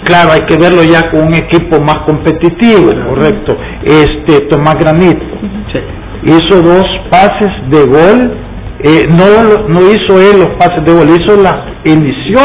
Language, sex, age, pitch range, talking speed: Spanish, male, 50-69, 145-180 Hz, 150 wpm